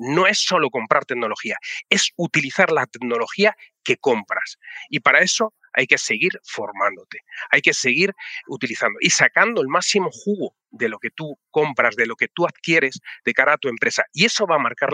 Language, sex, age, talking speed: Spanish, male, 30-49, 190 wpm